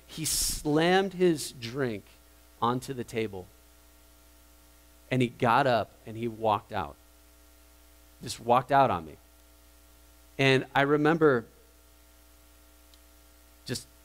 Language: English